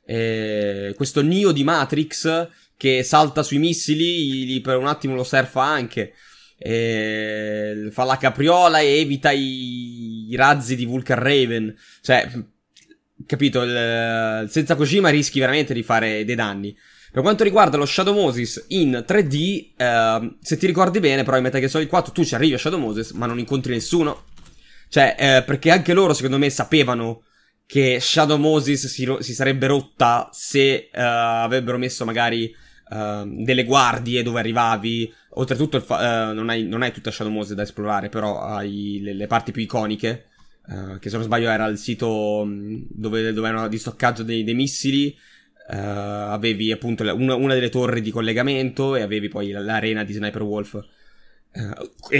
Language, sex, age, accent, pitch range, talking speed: Italian, male, 20-39, native, 110-140 Hz, 165 wpm